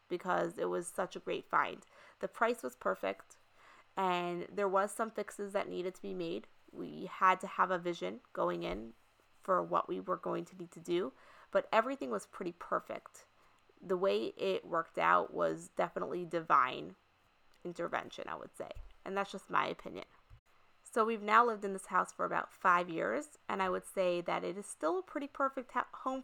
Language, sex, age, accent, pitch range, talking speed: English, female, 20-39, American, 175-210 Hz, 190 wpm